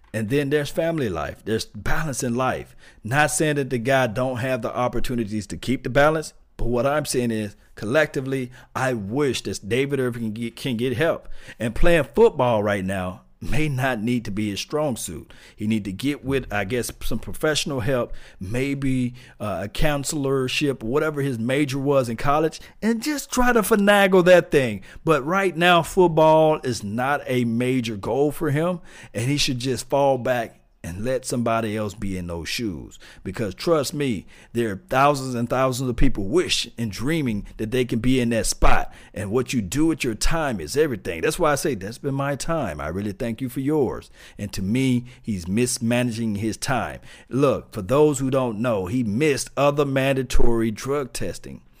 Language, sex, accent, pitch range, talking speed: English, male, American, 115-145 Hz, 190 wpm